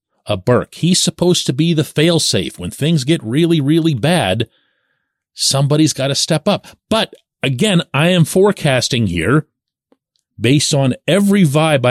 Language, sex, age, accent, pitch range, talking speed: English, male, 40-59, American, 110-165 Hz, 150 wpm